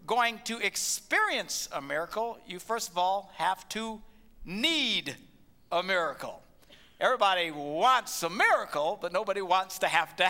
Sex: male